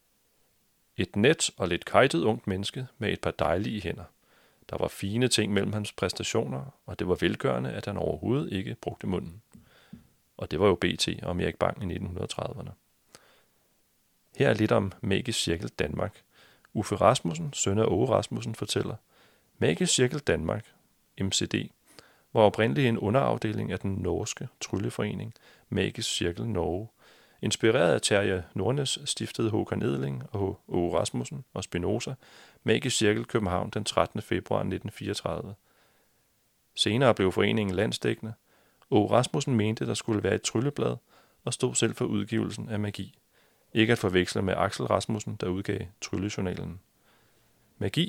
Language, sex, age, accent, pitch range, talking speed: Danish, male, 30-49, native, 95-115 Hz, 145 wpm